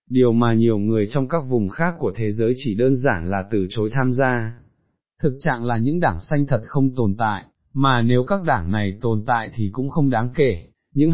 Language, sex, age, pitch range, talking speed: Vietnamese, male, 20-39, 110-140 Hz, 225 wpm